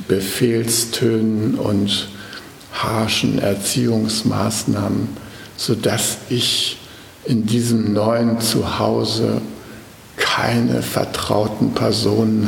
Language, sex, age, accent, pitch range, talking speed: German, male, 60-79, German, 100-110 Hz, 65 wpm